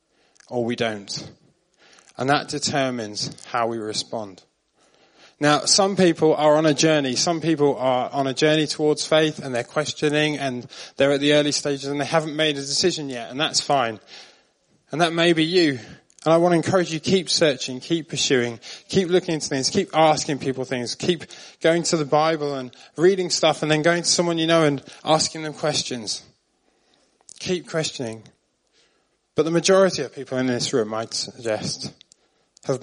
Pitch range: 125-160 Hz